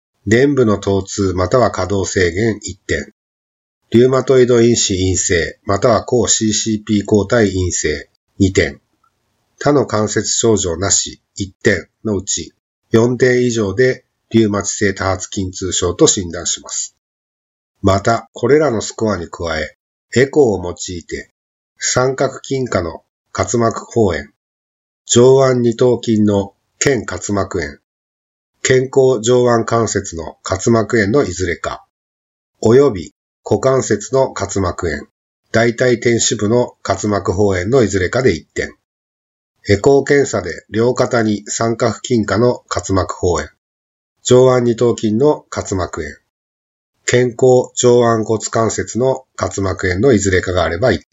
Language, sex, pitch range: Japanese, male, 95-120 Hz